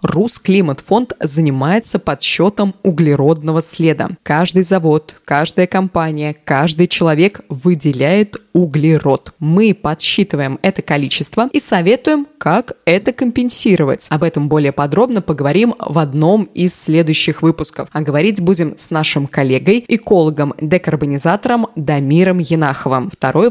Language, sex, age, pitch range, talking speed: Russian, female, 20-39, 155-205 Hz, 110 wpm